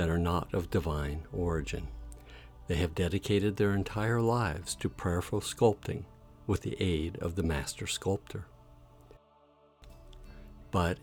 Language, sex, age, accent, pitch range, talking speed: English, male, 60-79, American, 80-105 Hz, 125 wpm